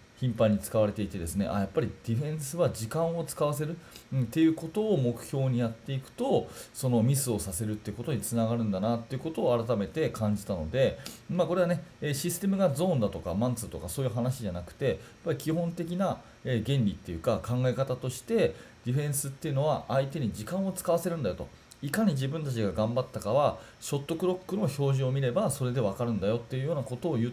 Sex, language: male, Japanese